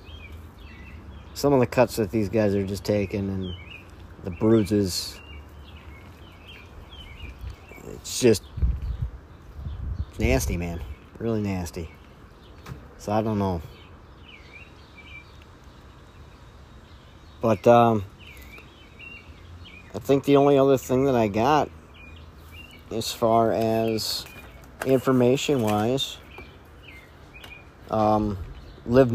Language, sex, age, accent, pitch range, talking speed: English, male, 50-69, American, 80-110 Hz, 80 wpm